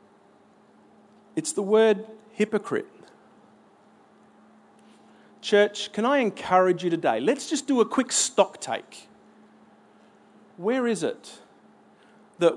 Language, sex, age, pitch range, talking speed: English, male, 40-59, 170-230 Hz, 100 wpm